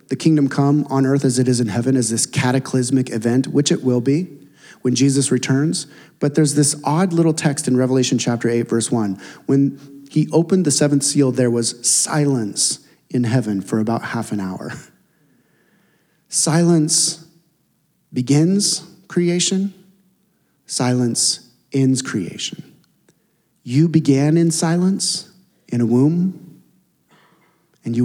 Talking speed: 135 wpm